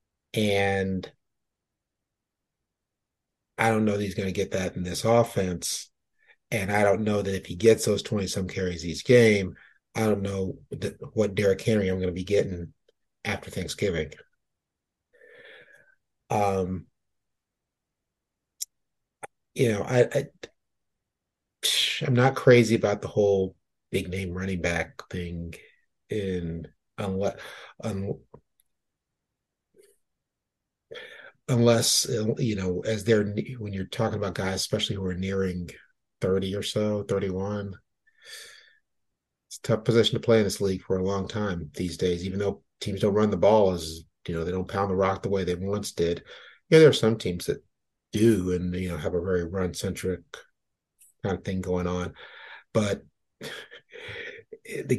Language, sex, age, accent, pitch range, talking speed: English, male, 30-49, American, 95-115 Hz, 145 wpm